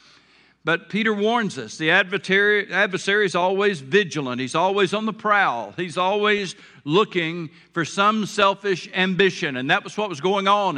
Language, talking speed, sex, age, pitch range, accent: English, 160 wpm, male, 60-79, 180-225 Hz, American